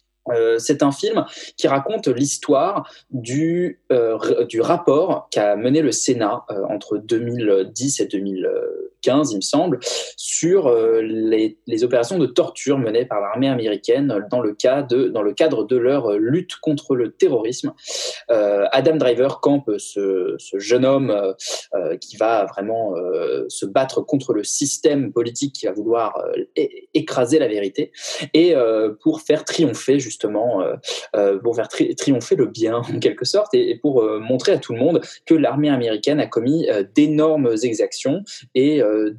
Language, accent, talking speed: French, French, 170 wpm